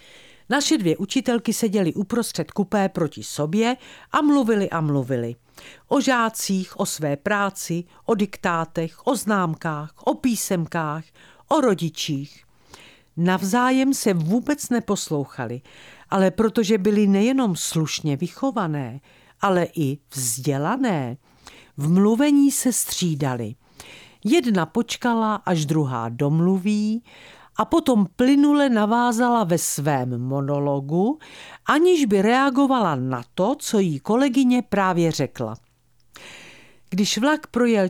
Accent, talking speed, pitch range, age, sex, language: native, 105 wpm, 155-230 Hz, 50-69, female, Czech